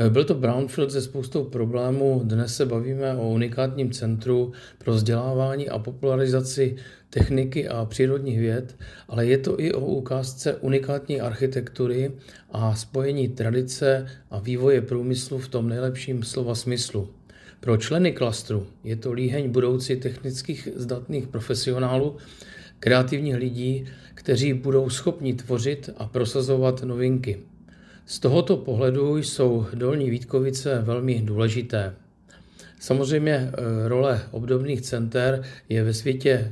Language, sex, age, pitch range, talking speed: Czech, male, 50-69, 120-135 Hz, 120 wpm